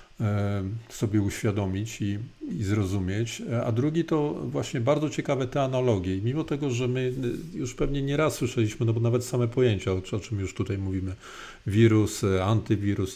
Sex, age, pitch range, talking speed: male, 40-59, 100-125 Hz, 160 wpm